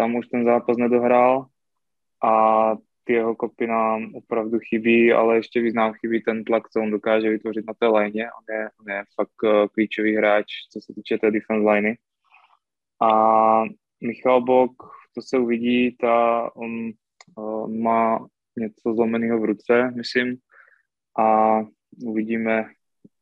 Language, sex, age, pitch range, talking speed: Slovak, male, 20-39, 110-120 Hz, 140 wpm